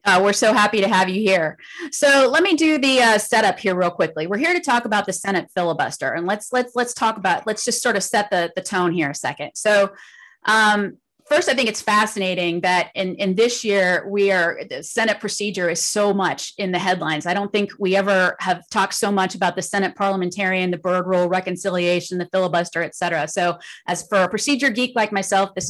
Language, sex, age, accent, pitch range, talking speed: English, female, 30-49, American, 185-225 Hz, 220 wpm